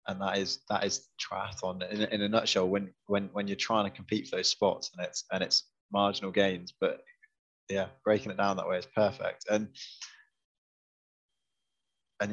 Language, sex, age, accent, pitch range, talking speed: English, male, 20-39, British, 95-120 Hz, 180 wpm